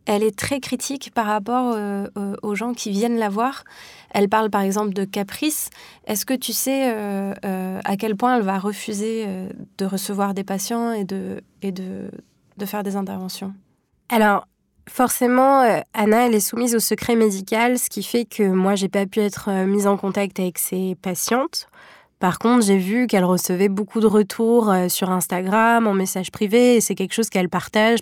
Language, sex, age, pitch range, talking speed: French, female, 20-39, 195-225 Hz, 190 wpm